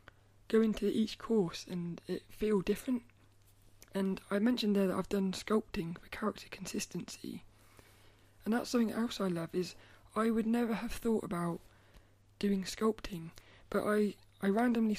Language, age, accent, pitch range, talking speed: English, 20-39, British, 130-215 Hz, 150 wpm